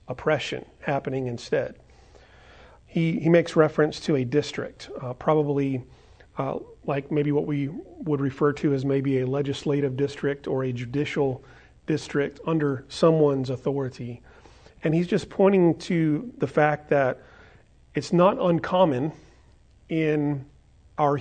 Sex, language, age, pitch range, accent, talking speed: male, English, 40-59, 140-165 Hz, American, 125 wpm